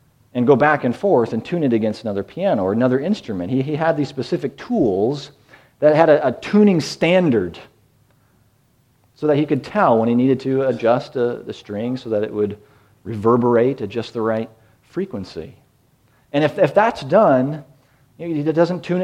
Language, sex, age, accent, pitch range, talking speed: English, male, 40-59, American, 120-170 Hz, 185 wpm